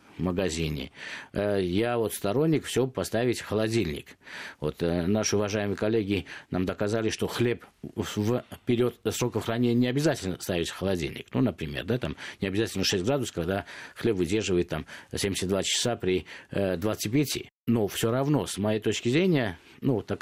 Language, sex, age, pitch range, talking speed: Russian, male, 50-69, 100-125 Hz, 150 wpm